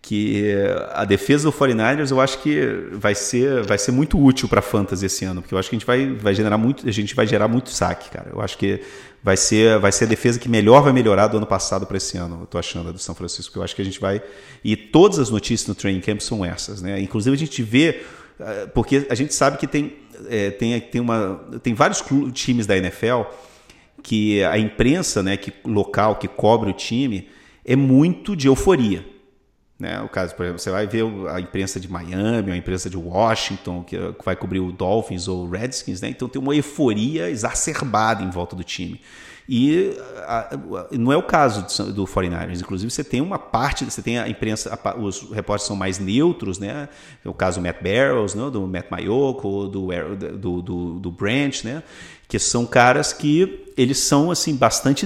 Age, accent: 40-59, Brazilian